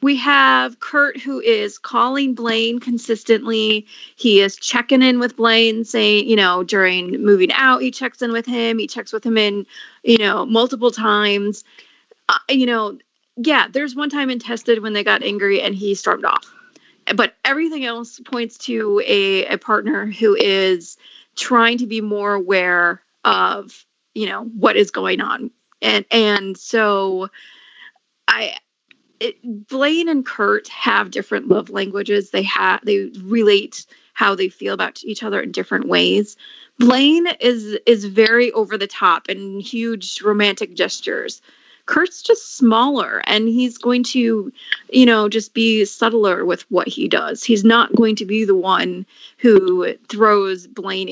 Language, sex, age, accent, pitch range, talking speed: English, female, 30-49, American, 205-255 Hz, 160 wpm